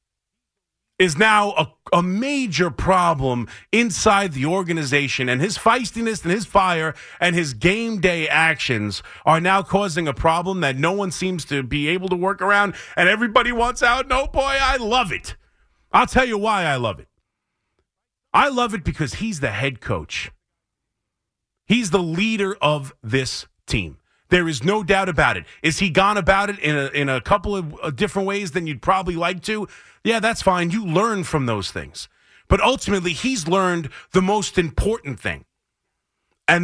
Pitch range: 155-205 Hz